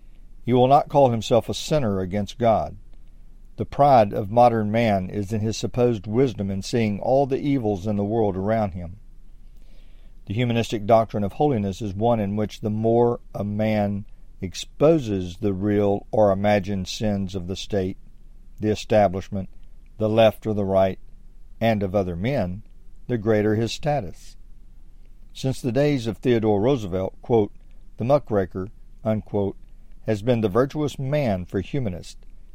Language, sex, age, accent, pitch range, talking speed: English, male, 50-69, American, 100-120 Hz, 155 wpm